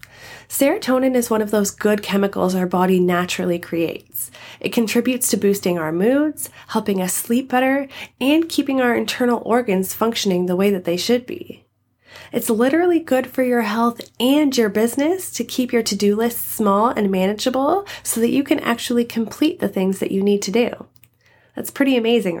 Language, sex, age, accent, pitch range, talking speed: English, female, 30-49, American, 185-245 Hz, 175 wpm